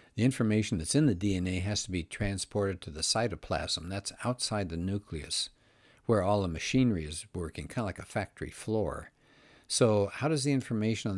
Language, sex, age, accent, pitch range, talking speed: English, male, 60-79, American, 85-110 Hz, 190 wpm